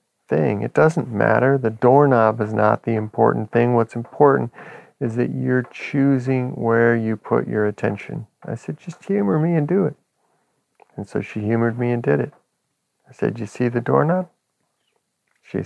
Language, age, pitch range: English, 50-69, 105-125 Hz